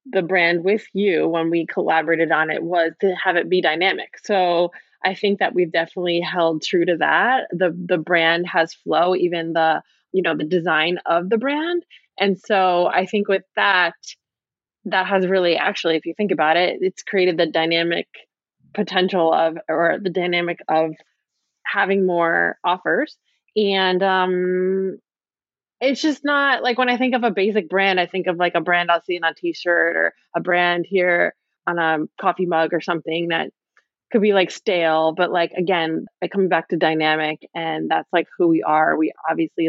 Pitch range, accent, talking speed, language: 165-200 Hz, American, 185 wpm, English